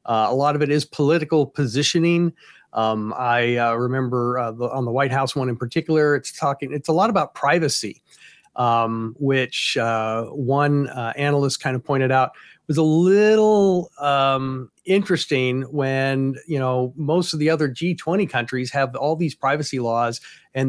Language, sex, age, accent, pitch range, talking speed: English, male, 40-59, American, 120-150 Hz, 165 wpm